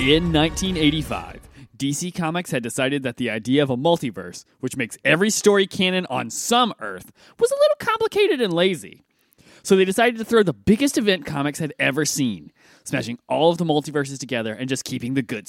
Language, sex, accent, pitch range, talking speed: English, male, American, 140-230 Hz, 190 wpm